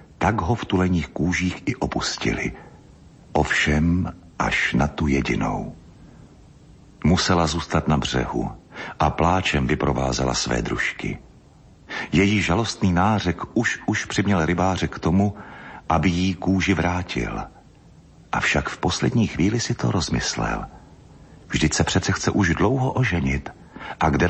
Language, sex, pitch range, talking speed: Slovak, male, 70-95 Hz, 125 wpm